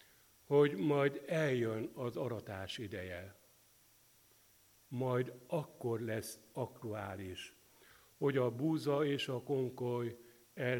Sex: male